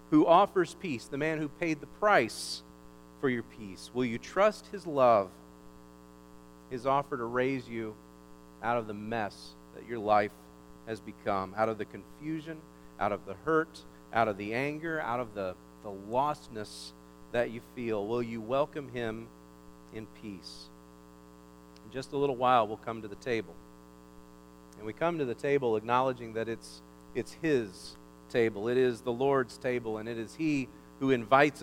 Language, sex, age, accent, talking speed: English, male, 40-59, American, 170 wpm